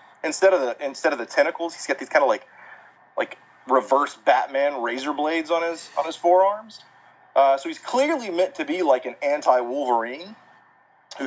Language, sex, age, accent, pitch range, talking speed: English, male, 30-49, American, 130-200 Hz, 180 wpm